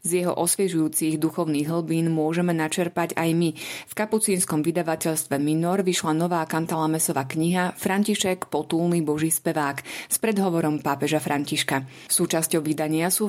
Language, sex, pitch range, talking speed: Slovak, female, 145-175 Hz, 125 wpm